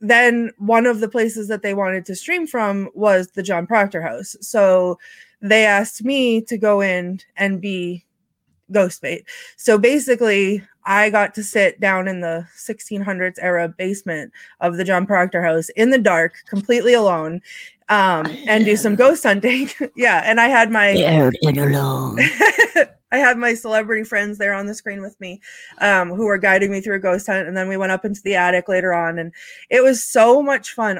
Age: 20-39